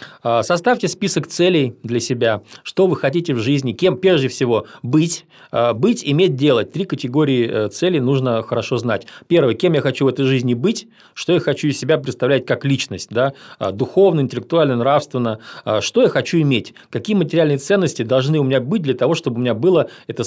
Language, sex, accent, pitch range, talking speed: Russian, male, native, 125-170 Hz, 180 wpm